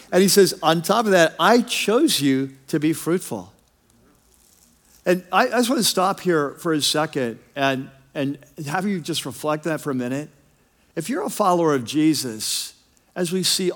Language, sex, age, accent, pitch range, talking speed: English, male, 50-69, American, 155-205 Hz, 190 wpm